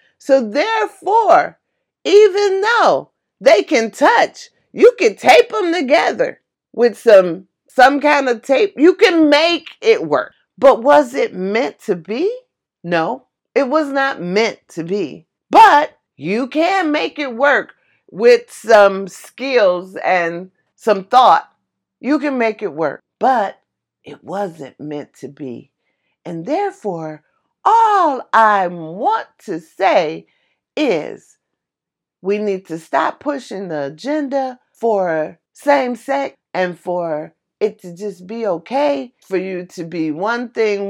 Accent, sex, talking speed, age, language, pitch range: American, female, 130 wpm, 40-59, English, 180-295 Hz